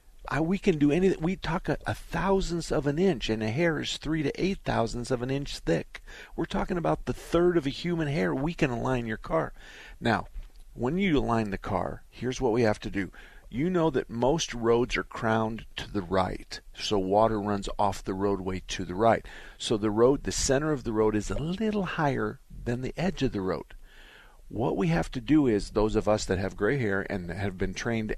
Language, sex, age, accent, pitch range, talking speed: English, male, 50-69, American, 100-140 Hz, 220 wpm